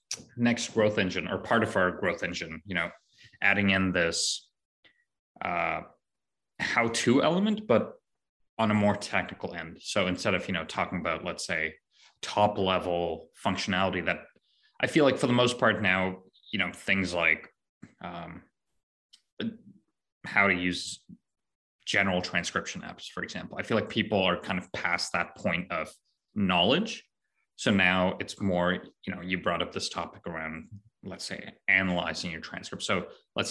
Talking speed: 155 wpm